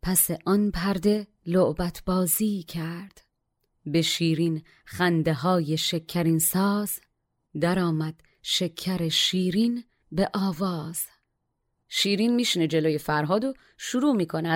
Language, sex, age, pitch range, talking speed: Persian, female, 30-49, 150-185 Hz, 100 wpm